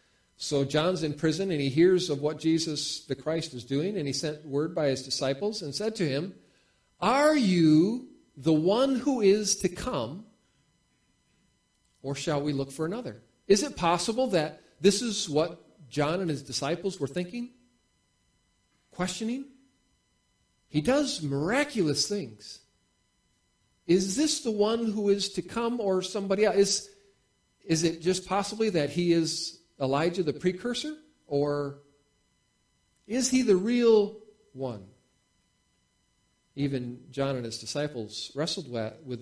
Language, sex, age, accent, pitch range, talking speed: English, male, 50-69, American, 140-205 Hz, 140 wpm